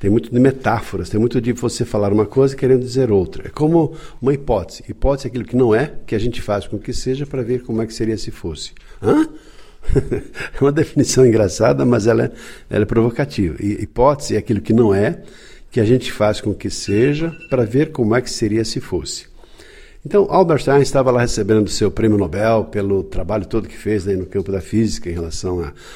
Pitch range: 105-135 Hz